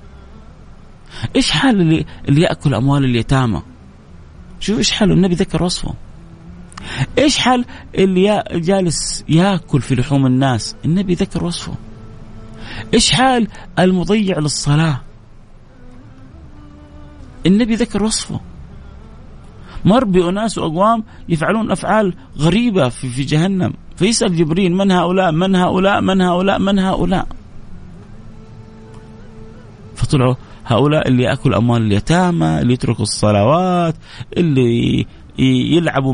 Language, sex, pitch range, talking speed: Arabic, male, 115-185 Hz, 105 wpm